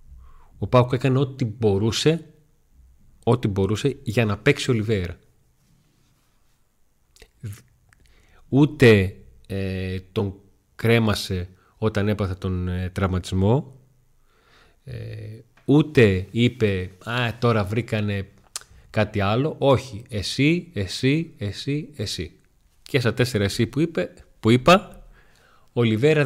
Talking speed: 85 wpm